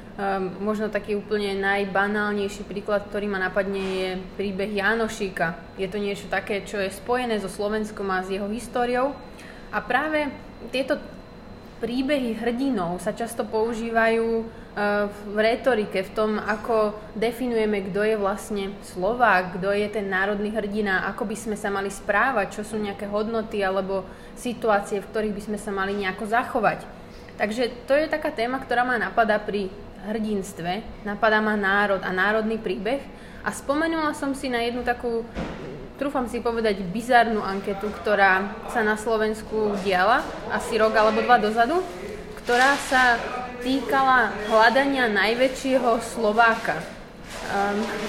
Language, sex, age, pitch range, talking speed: Slovak, female, 20-39, 200-240 Hz, 140 wpm